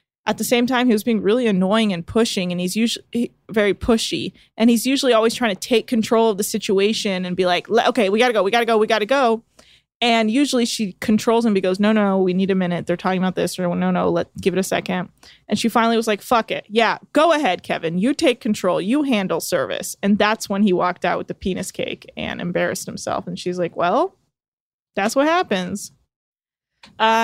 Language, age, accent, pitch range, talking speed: English, 20-39, American, 185-230 Hz, 230 wpm